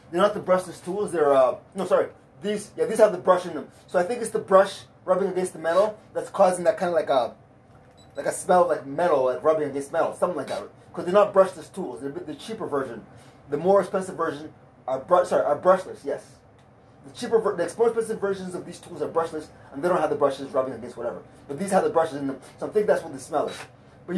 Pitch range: 130-190 Hz